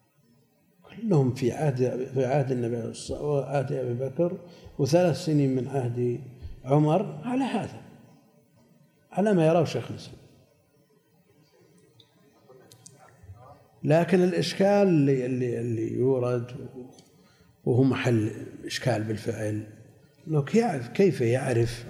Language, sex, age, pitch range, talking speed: Arabic, male, 50-69, 120-150 Hz, 90 wpm